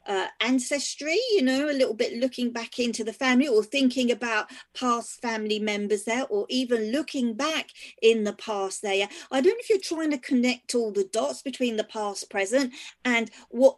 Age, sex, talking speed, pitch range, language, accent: 40-59, female, 195 wpm, 225-280 Hz, English, British